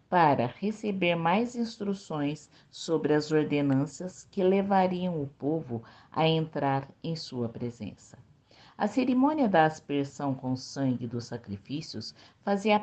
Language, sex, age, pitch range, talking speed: Portuguese, female, 50-69, 130-195 Hz, 115 wpm